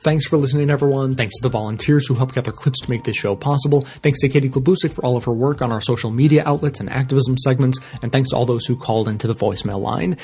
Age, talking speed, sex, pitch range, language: 30-49, 265 wpm, male, 115-140 Hz, English